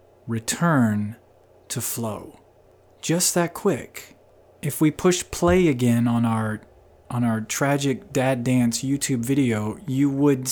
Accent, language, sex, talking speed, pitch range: American, English, male, 125 wpm, 110-145 Hz